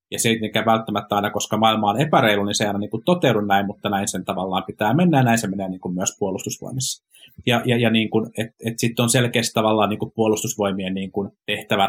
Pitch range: 100-125 Hz